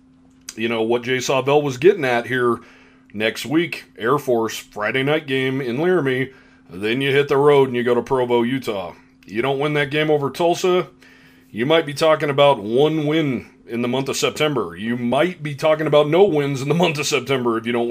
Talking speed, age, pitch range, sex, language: 210 wpm, 30-49, 115-140 Hz, male, English